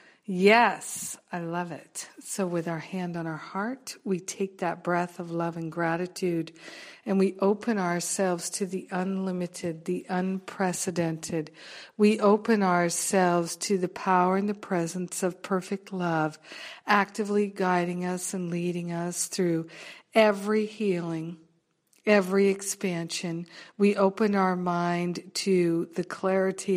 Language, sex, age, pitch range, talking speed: English, female, 50-69, 170-205 Hz, 130 wpm